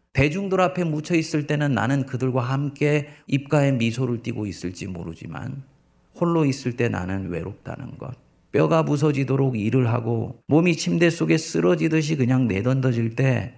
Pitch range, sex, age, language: 110-145 Hz, male, 40-59, Korean